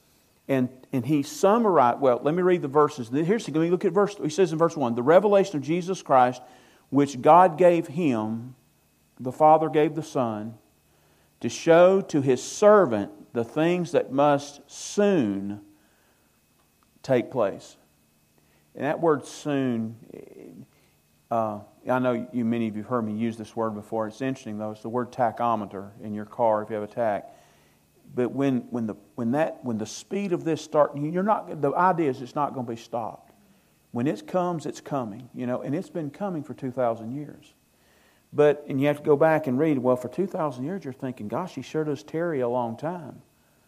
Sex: male